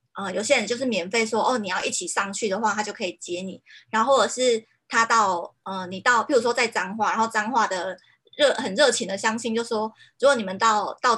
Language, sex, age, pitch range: Chinese, female, 20-39, 190-235 Hz